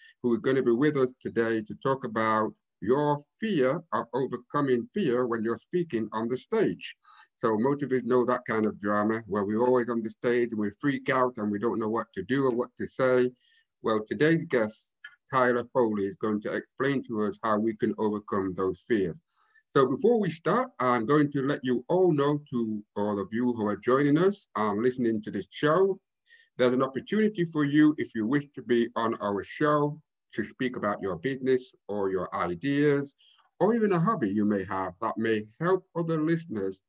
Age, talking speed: 50-69, 205 wpm